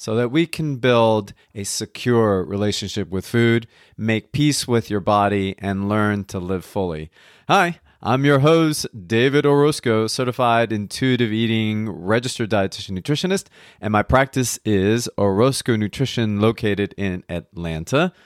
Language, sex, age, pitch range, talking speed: English, male, 30-49, 100-125 Hz, 135 wpm